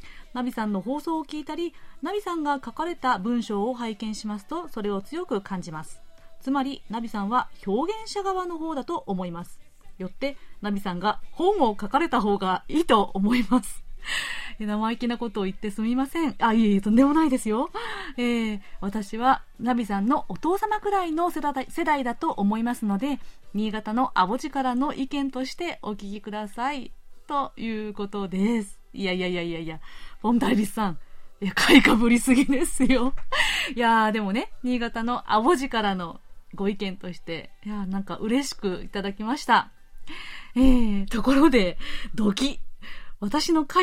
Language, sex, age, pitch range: Japanese, female, 30-49, 200-280 Hz